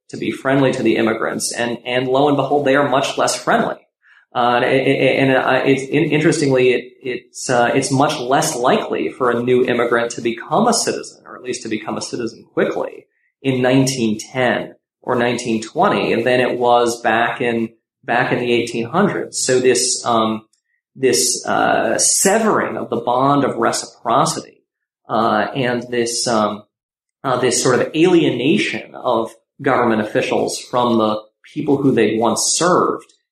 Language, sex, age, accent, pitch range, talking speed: English, male, 30-49, American, 120-145 Hz, 160 wpm